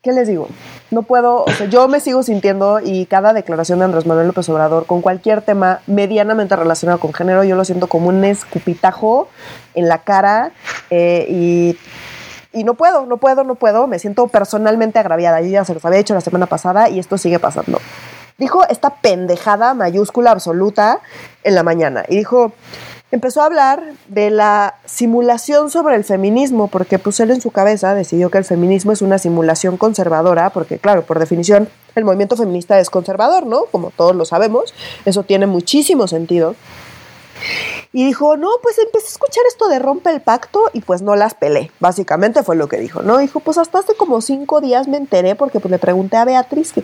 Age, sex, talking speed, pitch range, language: 20-39, female, 190 wpm, 185-275 Hz, Spanish